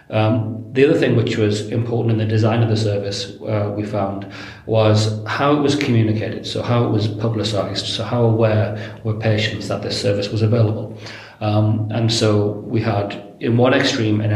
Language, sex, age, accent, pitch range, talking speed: English, male, 40-59, British, 105-115 Hz, 190 wpm